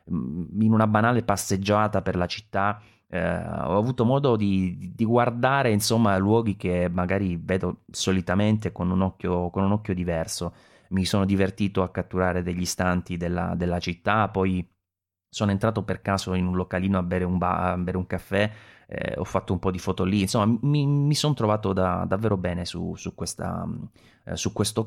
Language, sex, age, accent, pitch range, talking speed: English, male, 30-49, Italian, 90-110 Hz, 180 wpm